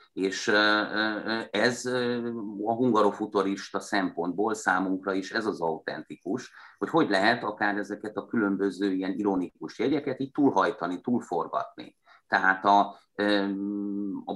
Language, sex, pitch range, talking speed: Hungarian, male, 95-105 Hz, 110 wpm